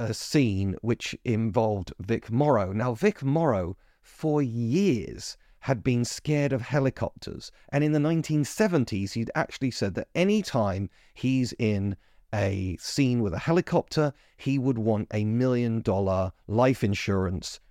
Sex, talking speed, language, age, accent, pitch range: male, 135 wpm, English, 40-59, British, 105-155 Hz